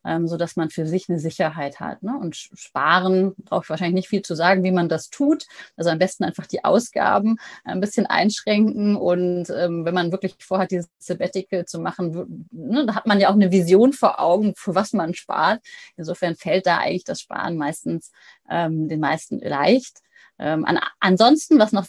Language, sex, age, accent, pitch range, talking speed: German, female, 30-49, German, 175-220 Hz, 190 wpm